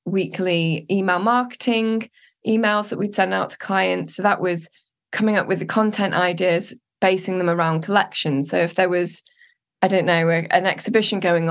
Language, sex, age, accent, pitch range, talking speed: English, female, 20-39, British, 170-205 Hz, 170 wpm